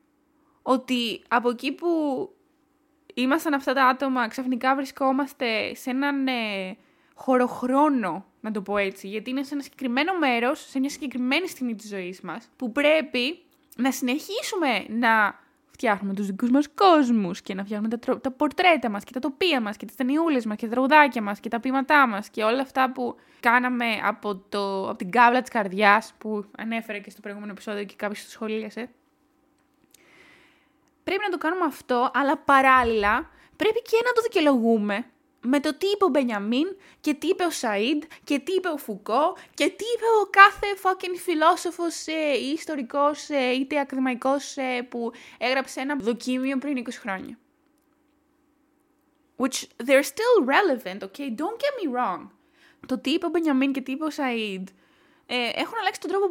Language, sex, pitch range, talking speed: Greek, female, 235-315 Hz, 165 wpm